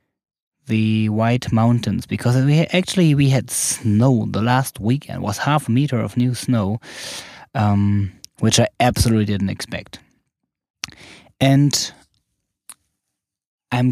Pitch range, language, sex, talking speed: 105-125 Hz, English, male, 120 wpm